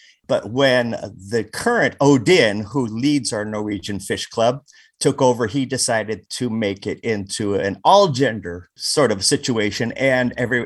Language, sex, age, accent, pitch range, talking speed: English, male, 50-69, American, 110-145 Hz, 150 wpm